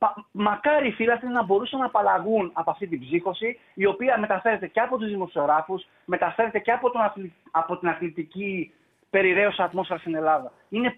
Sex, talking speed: male, 165 wpm